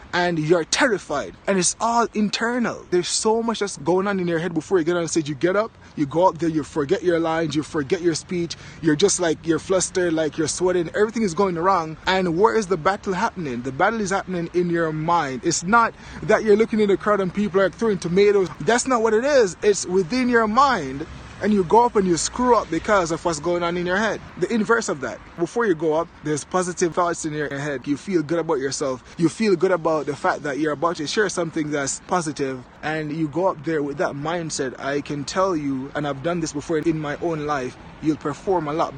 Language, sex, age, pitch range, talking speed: English, male, 20-39, 150-195 Hz, 240 wpm